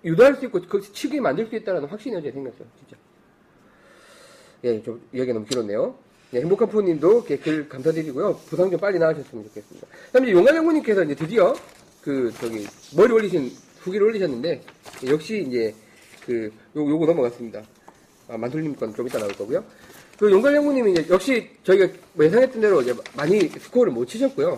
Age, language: 40-59, Korean